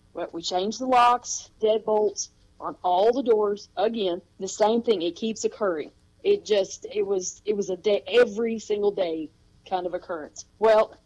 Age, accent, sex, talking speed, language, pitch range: 40-59, American, female, 175 wpm, English, 185-225 Hz